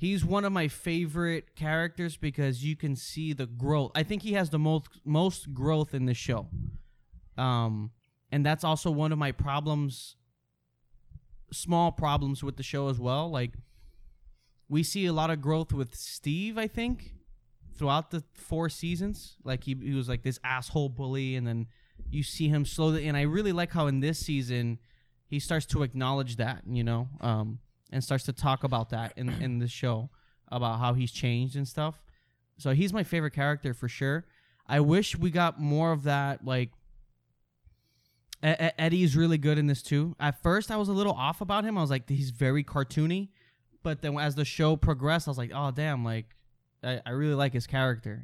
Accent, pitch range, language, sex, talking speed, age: American, 125-155 Hz, English, male, 190 wpm, 20-39